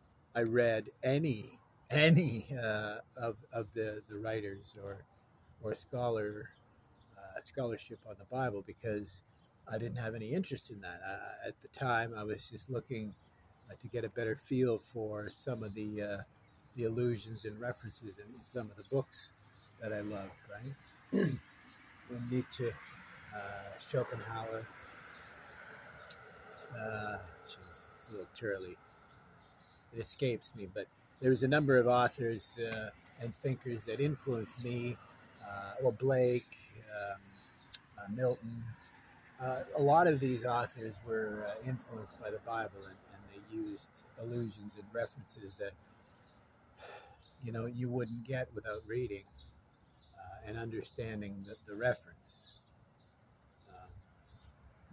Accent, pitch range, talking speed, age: American, 105-125 Hz, 135 wpm, 50-69